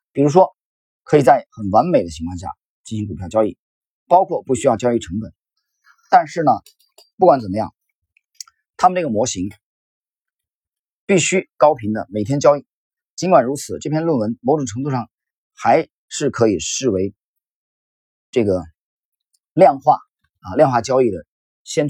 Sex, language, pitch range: male, Chinese, 105-175 Hz